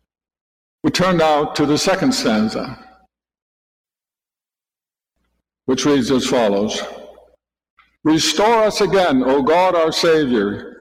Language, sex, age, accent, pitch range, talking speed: English, male, 60-79, American, 155-220 Hz, 100 wpm